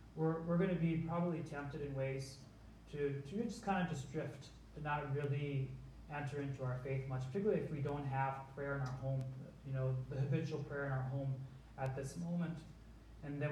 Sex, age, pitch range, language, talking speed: male, 30-49, 130-155 Hz, English, 200 wpm